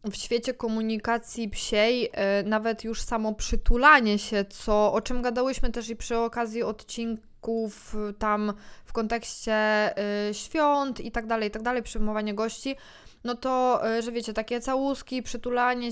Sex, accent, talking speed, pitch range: female, native, 140 wpm, 220-265 Hz